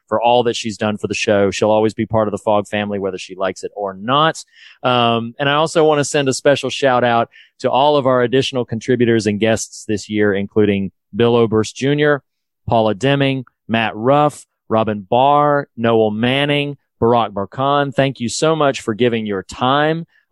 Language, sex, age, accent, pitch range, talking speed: English, male, 30-49, American, 105-130 Hz, 190 wpm